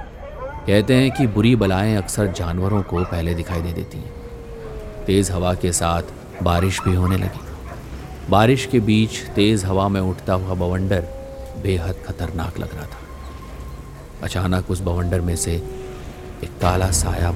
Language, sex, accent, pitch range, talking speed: Hindi, male, native, 80-95 Hz, 150 wpm